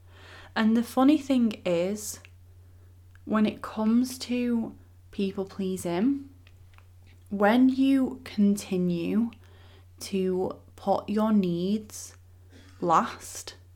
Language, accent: English, British